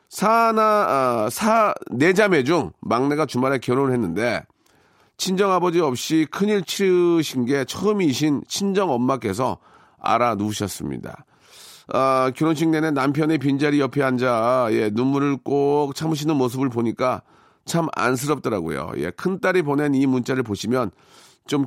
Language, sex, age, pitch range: Korean, male, 40-59, 115-140 Hz